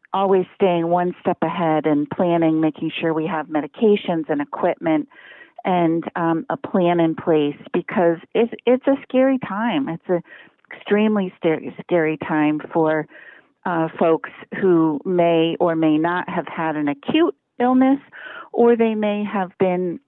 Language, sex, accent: English, female, American